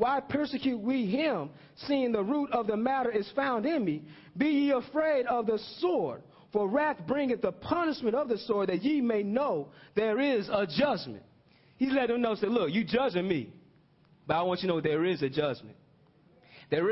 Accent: American